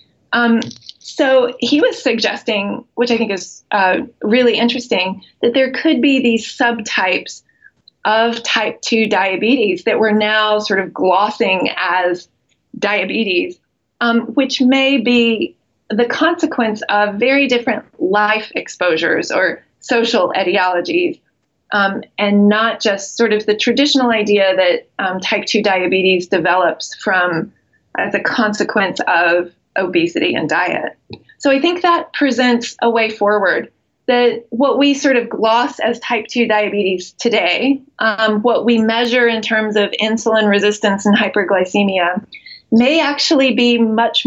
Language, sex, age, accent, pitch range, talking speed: English, female, 20-39, American, 210-250 Hz, 135 wpm